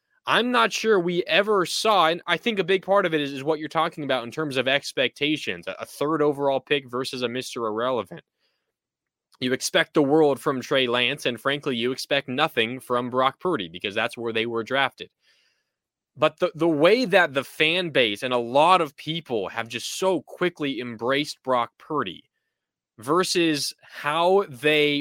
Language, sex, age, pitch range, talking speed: English, male, 20-39, 130-170 Hz, 180 wpm